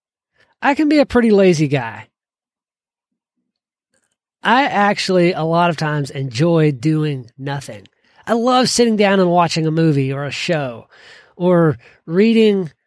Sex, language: male, English